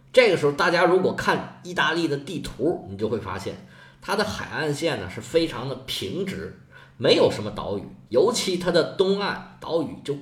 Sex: male